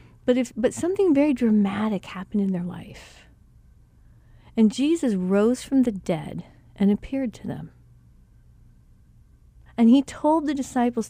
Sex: female